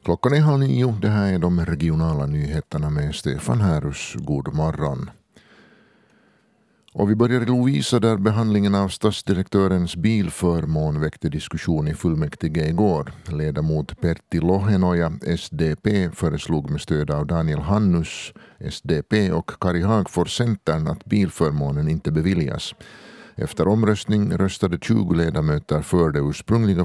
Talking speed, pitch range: 125 wpm, 80-100 Hz